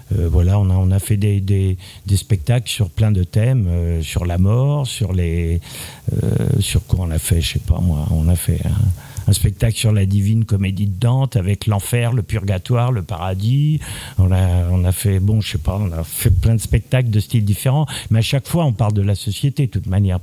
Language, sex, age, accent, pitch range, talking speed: French, male, 50-69, French, 100-130 Hz, 235 wpm